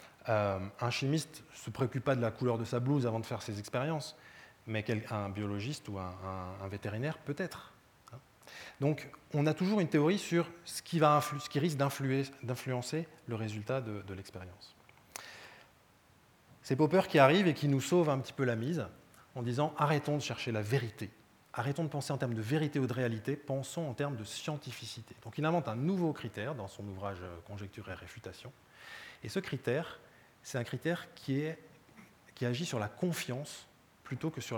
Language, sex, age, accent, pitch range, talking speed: French, male, 20-39, French, 115-150 Hz, 195 wpm